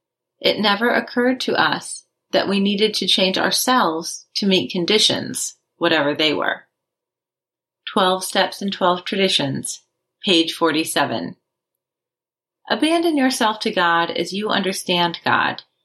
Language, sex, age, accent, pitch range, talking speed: English, female, 30-49, American, 175-225 Hz, 120 wpm